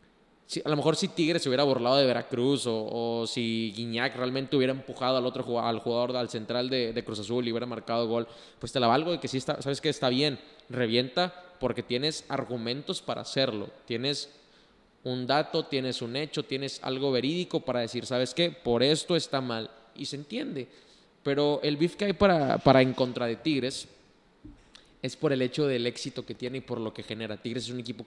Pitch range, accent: 115-135 Hz, Mexican